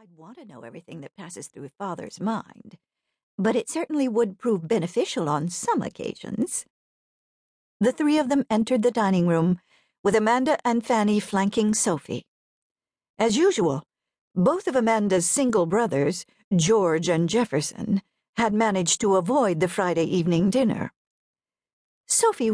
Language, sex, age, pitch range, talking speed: English, female, 60-79, 185-255 Hz, 140 wpm